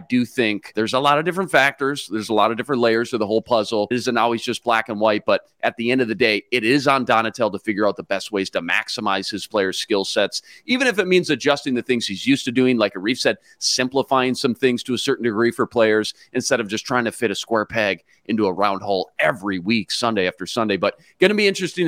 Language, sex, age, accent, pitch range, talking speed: English, male, 40-59, American, 115-140 Hz, 260 wpm